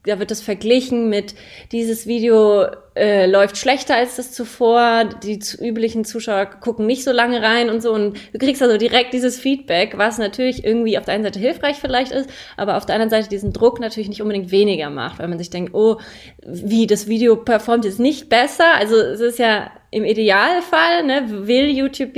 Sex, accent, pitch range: female, German, 195-235 Hz